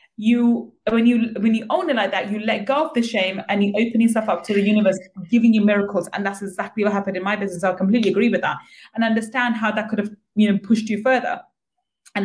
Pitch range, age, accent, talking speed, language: 195-235 Hz, 20-39, British, 250 wpm, English